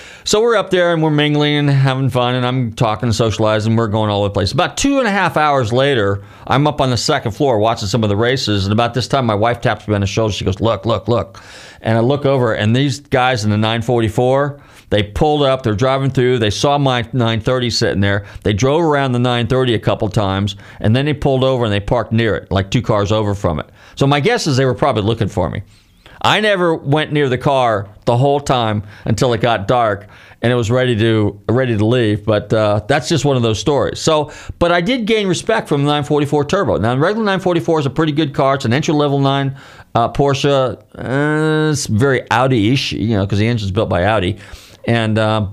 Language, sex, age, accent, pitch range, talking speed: English, male, 40-59, American, 110-140 Hz, 235 wpm